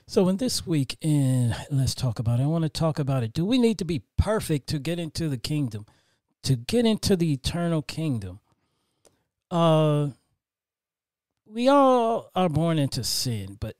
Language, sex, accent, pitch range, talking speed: English, male, American, 110-150 Hz, 175 wpm